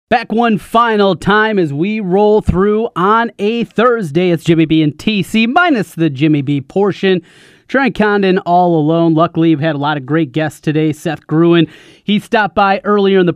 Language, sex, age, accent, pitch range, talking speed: English, male, 30-49, American, 155-200 Hz, 190 wpm